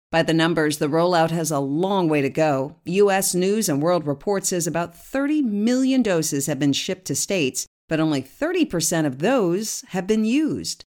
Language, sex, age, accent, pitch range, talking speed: English, female, 50-69, American, 155-215 Hz, 190 wpm